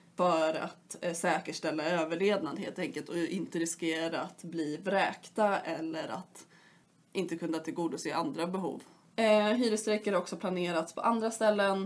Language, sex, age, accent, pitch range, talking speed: Swedish, female, 20-39, native, 170-200 Hz, 130 wpm